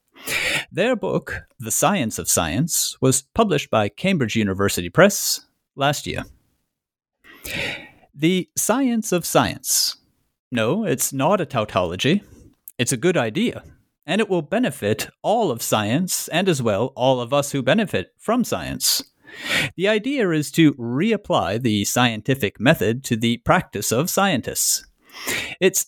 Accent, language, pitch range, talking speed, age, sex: American, English, 110-175 Hz, 135 wpm, 40-59, male